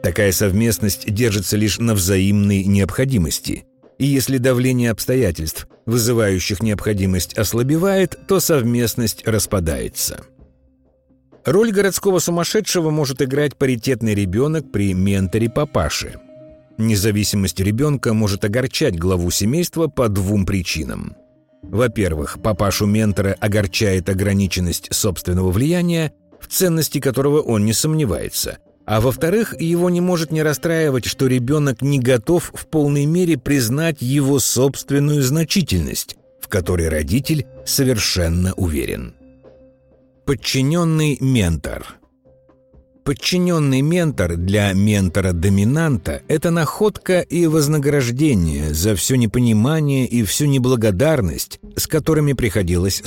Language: Russian